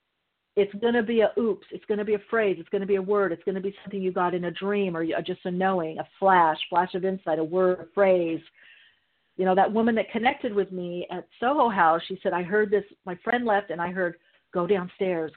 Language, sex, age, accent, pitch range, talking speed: English, female, 50-69, American, 175-210 Hz, 255 wpm